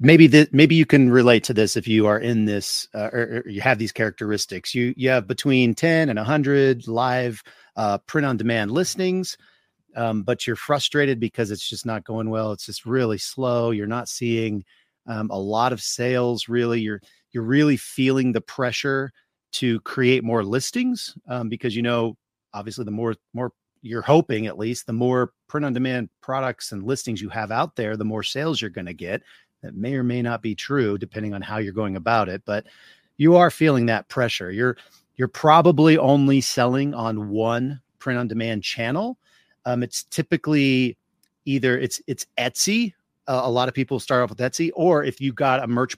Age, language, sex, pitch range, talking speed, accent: 40-59, English, male, 110-135 Hz, 190 wpm, American